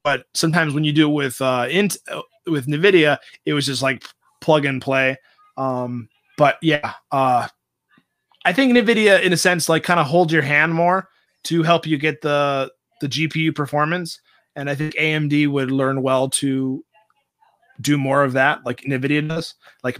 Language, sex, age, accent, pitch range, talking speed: English, male, 20-39, American, 140-170 Hz, 170 wpm